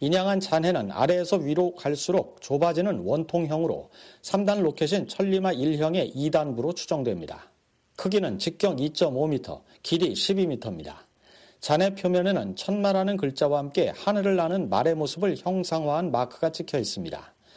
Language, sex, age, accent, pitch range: Korean, male, 40-59, native, 150-185 Hz